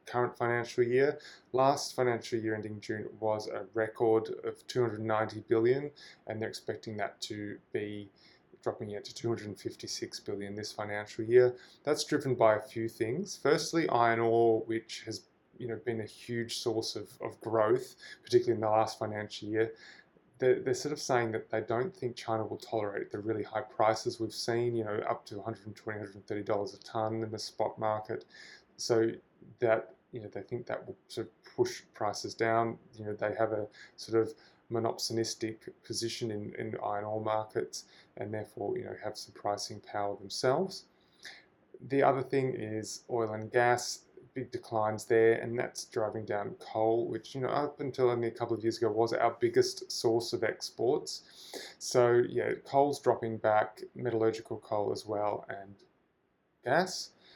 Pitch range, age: 110-125 Hz, 20-39